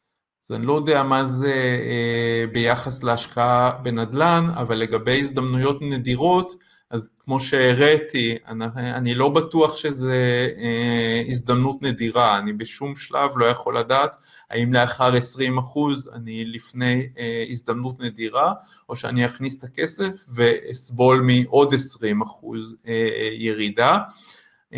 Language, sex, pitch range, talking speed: Hebrew, male, 115-140 Hz, 105 wpm